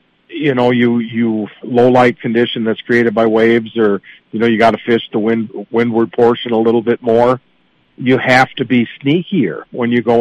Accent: American